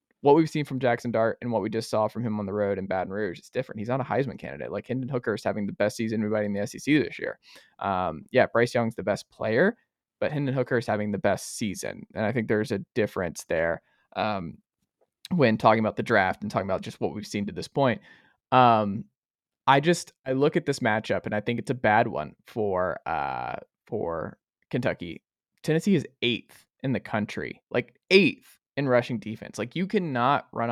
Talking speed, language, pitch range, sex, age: 210 wpm, English, 105-125 Hz, male, 20-39